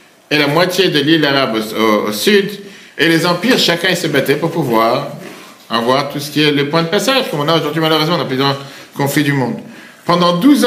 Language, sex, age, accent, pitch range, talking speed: French, male, 50-69, French, 140-190 Hz, 225 wpm